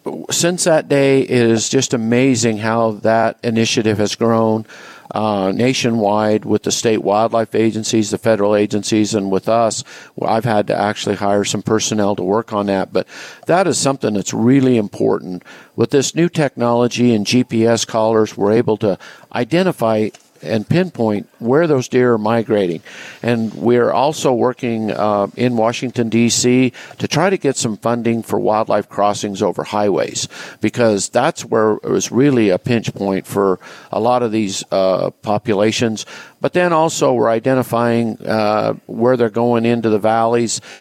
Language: English